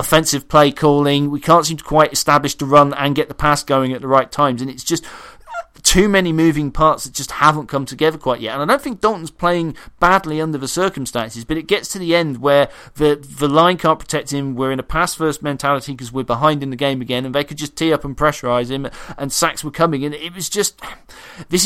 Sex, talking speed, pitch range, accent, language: male, 245 wpm, 130-155 Hz, British, English